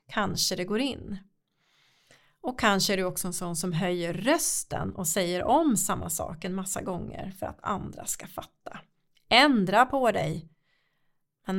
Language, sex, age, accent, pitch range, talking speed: Swedish, female, 30-49, native, 180-230 Hz, 160 wpm